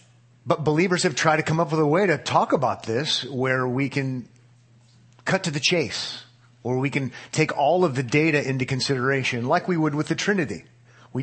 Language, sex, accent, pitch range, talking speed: English, male, American, 115-135 Hz, 205 wpm